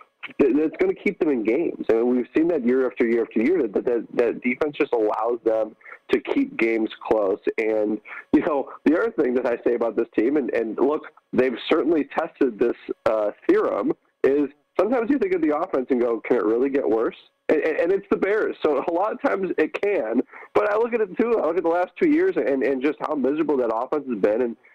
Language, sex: English, male